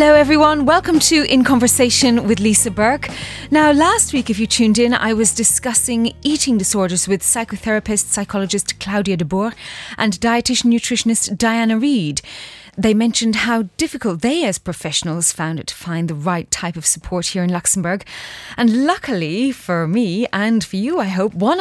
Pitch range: 185-240 Hz